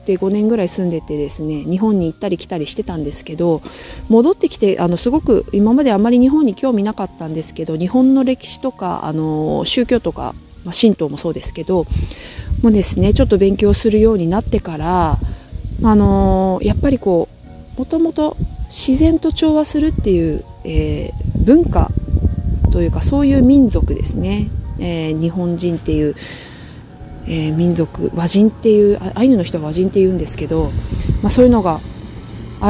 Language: Japanese